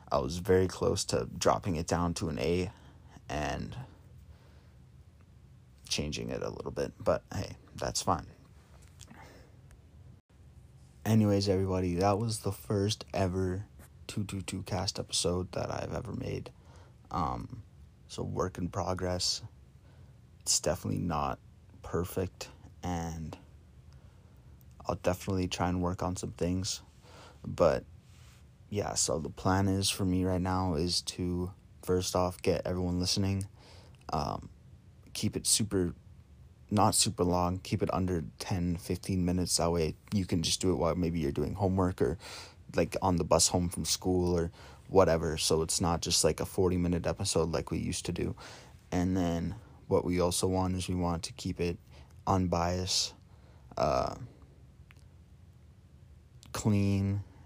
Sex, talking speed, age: male, 140 wpm, 30-49